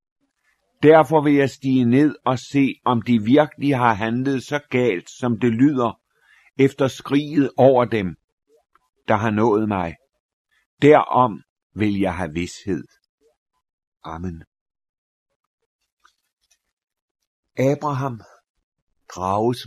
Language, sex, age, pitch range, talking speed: Danish, male, 60-79, 115-145 Hz, 100 wpm